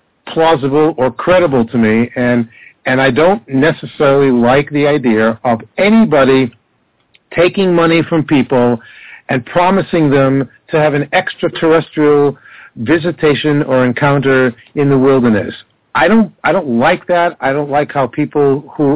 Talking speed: 140 wpm